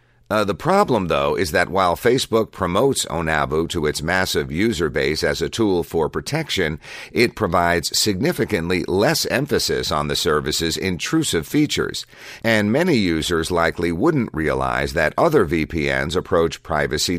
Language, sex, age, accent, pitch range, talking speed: English, male, 50-69, American, 80-105 Hz, 145 wpm